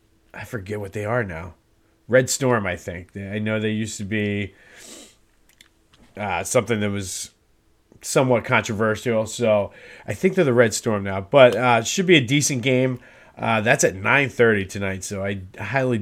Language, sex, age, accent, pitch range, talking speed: English, male, 30-49, American, 105-130 Hz, 170 wpm